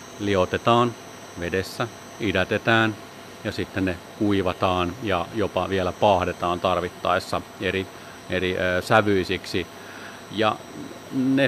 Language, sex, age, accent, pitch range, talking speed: Finnish, male, 40-59, native, 95-125 Hz, 90 wpm